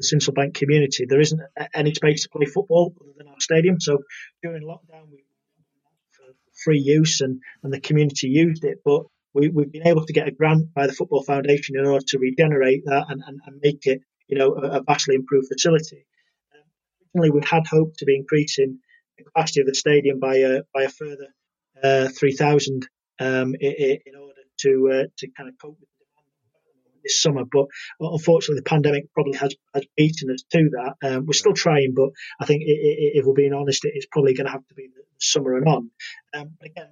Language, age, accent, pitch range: English, 30-49, British, 135-155 Hz